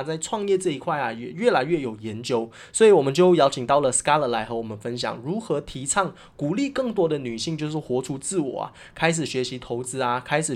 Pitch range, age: 125-175 Hz, 20-39